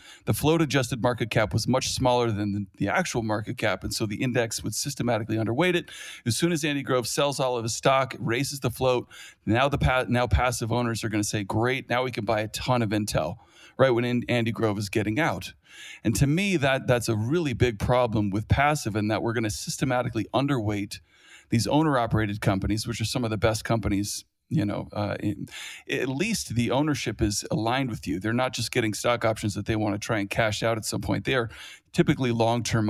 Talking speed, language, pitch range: 220 wpm, English, 105-125 Hz